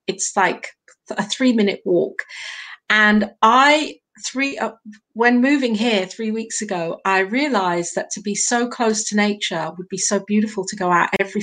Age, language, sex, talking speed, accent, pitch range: 50-69, English, female, 175 wpm, British, 185-225 Hz